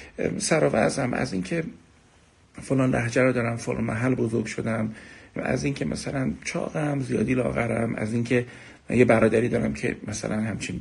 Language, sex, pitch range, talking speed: Persian, male, 110-145 Hz, 150 wpm